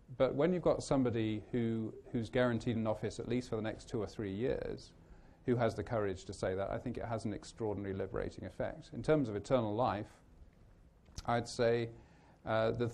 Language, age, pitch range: English, 40-59, 100-120 Hz